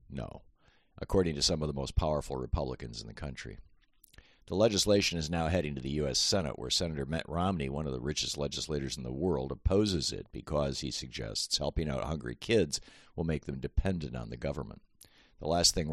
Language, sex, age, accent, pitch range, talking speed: English, male, 50-69, American, 70-85 Hz, 195 wpm